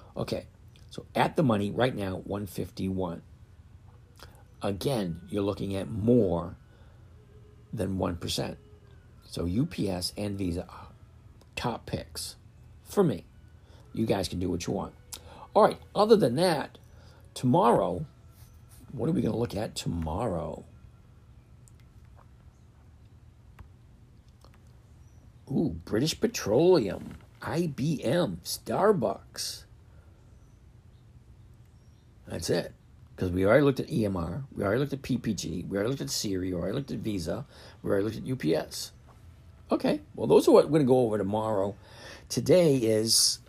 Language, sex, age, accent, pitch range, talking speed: English, male, 60-79, American, 95-115 Hz, 125 wpm